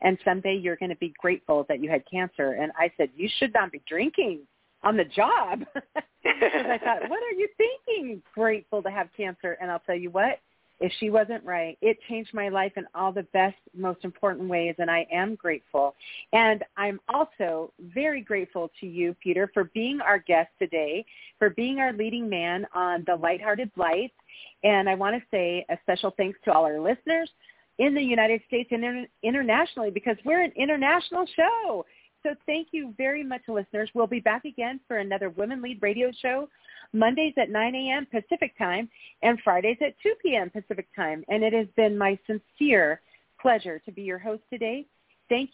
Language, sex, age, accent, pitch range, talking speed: English, female, 40-59, American, 185-250 Hz, 190 wpm